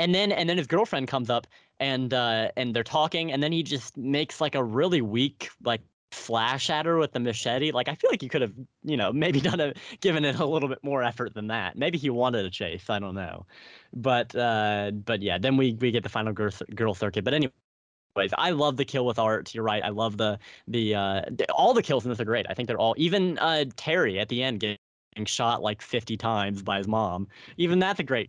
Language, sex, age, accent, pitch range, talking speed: English, male, 10-29, American, 105-150 Hz, 245 wpm